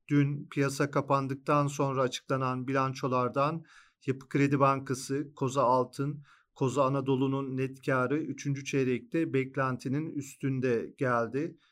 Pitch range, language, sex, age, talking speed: 130-145 Hz, Turkish, male, 40-59, 100 wpm